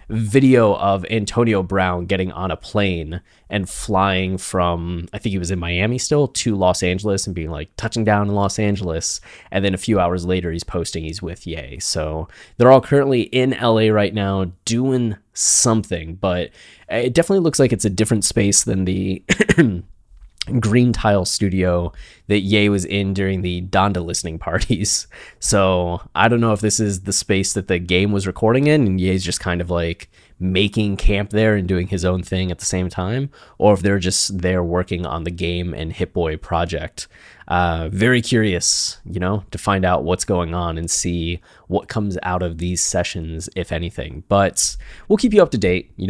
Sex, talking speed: male, 195 wpm